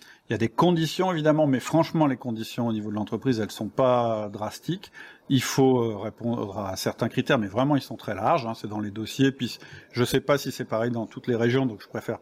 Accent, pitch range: French, 115-145 Hz